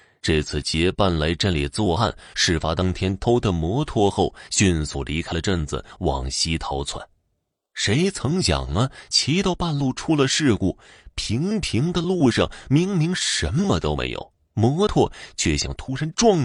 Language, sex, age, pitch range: Chinese, male, 30-49, 80-120 Hz